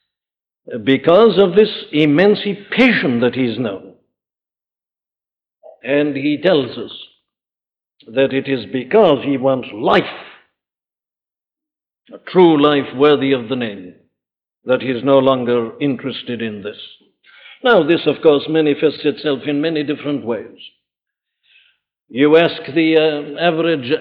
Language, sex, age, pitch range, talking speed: English, male, 60-79, 130-170 Hz, 115 wpm